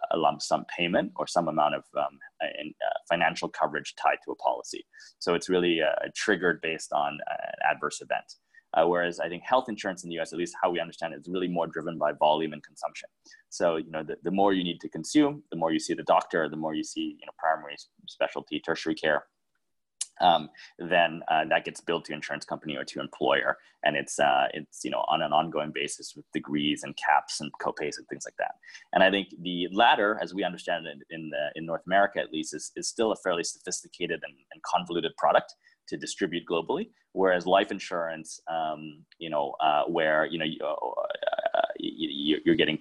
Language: English